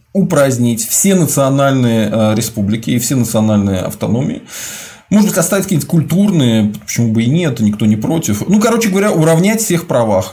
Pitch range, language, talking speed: 110-170 Hz, Russian, 155 wpm